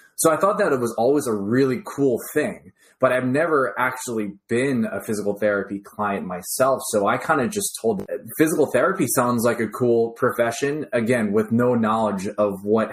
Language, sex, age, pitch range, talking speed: English, male, 20-39, 105-125 Hz, 185 wpm